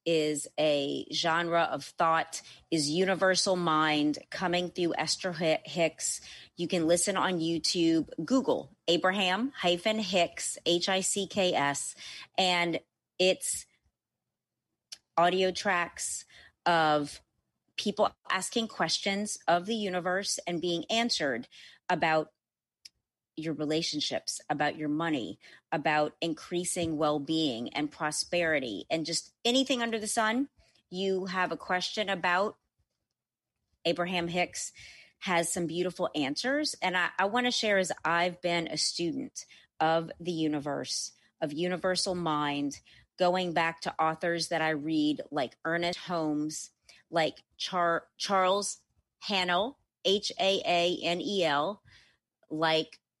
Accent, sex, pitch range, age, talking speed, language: American, female, 160-190 Hz, 30-49, 115 wpm, English